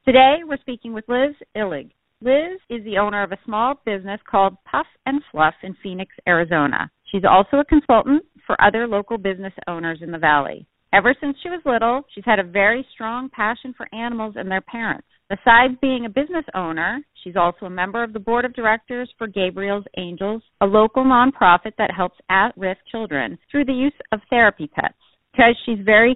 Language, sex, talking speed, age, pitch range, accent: English, female, 190 wpm, 40-59, 185-245 Hz, American